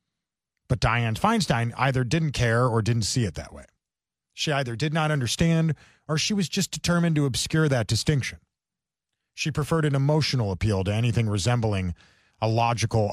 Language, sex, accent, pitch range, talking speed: English, male, American, 100-140 Hz, 165 wpm